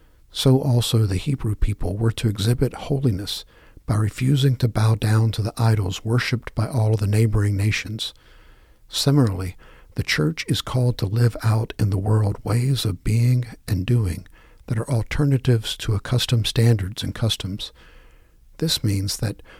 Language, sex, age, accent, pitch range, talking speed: English, male, 60-79, American, 105-120 Hz, 155 wpm